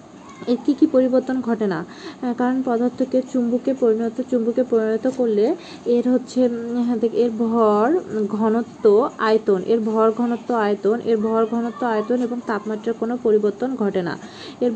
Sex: female